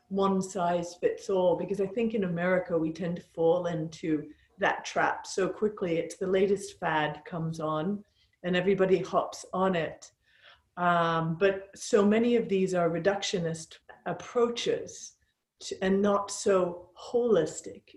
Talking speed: 130 wpm